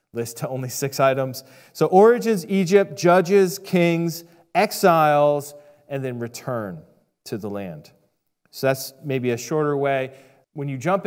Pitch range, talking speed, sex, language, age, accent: 135-180 Hz, 140 wpm, male, English, 30-49, American